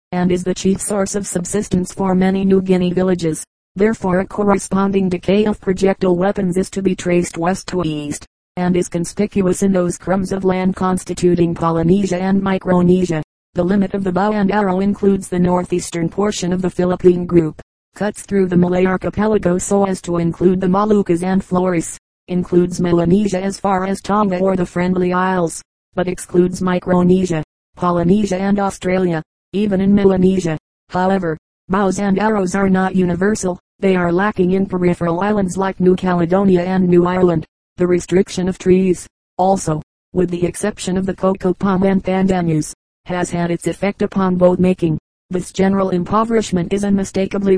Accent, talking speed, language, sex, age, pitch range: American, 165 wpm, English, female, 40-59, 180-195 Hz